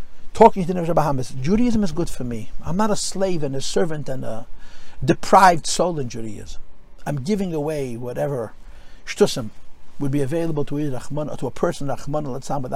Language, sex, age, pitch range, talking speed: English, male, 60-79, 125-185 Hz, 150 wpm